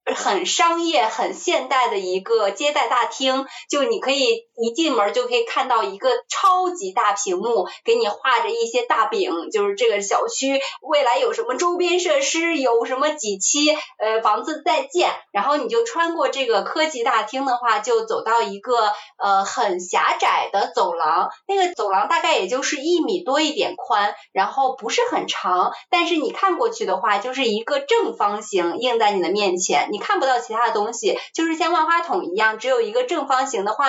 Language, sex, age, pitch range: Chinese, female, 20-39, 255-390 Hz